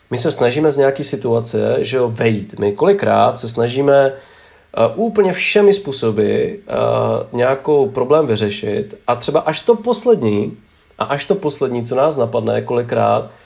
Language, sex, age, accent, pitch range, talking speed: English, male, 40-59, Czech, 110-145 Hz, 150 wpm